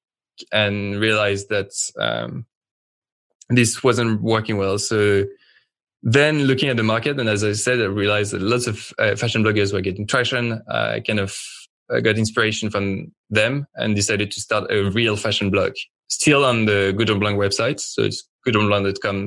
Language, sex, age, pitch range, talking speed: English, male, 20-39, 100-120 Hz, 170 wpm